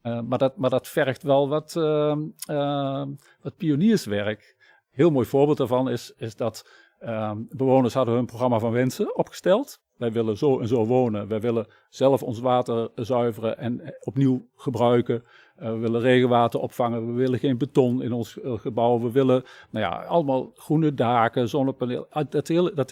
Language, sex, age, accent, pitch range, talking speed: Dutch, male, 50-69, Dutch, 115-140 Hz, 175 wpm